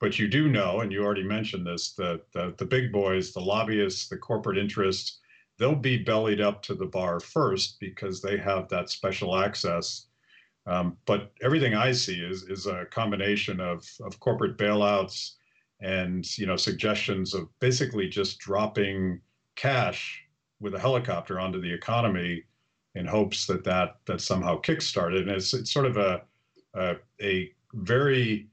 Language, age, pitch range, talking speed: English, 50-69, 100-125 Hz, 160 wpm